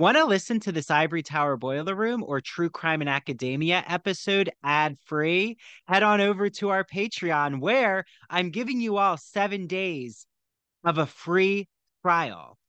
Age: 30-49